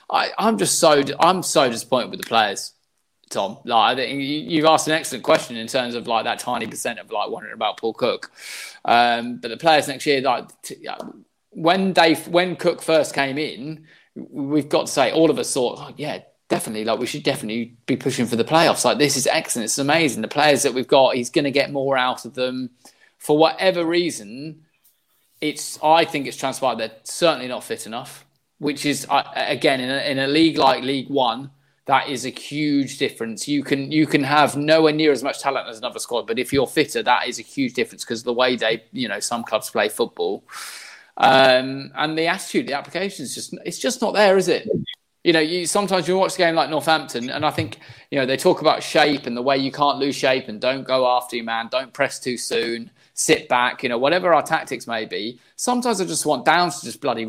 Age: 20-39